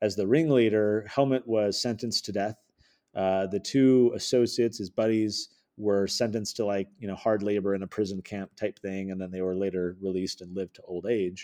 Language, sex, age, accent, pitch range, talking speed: English, male, 30-49, American, 95-125 Hz, 205 wpm